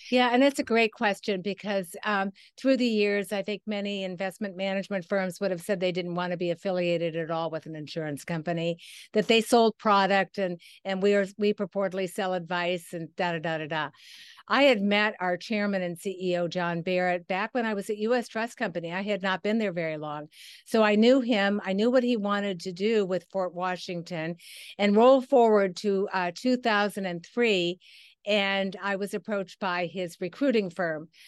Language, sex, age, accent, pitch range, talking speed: English, female, 50-69, American, 180-220 Hz, 200 wpm